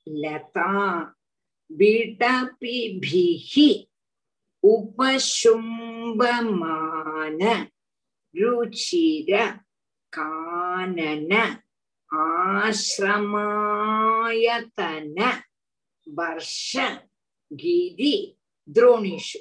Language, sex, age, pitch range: Tamil, female, 50-69, 175-265 Hz